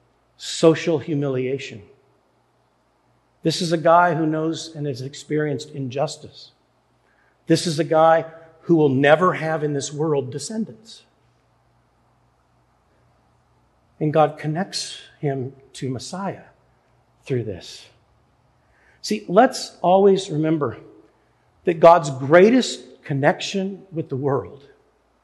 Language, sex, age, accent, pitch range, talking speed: English, male, 50-69, American, 140-195 Hz, 100 wpm